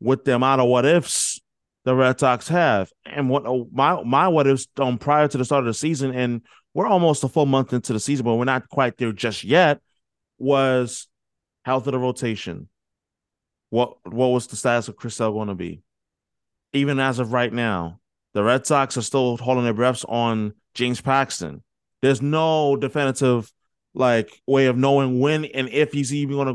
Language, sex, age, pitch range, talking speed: English, male, 20-39, 125-155 Hz, 190 wpm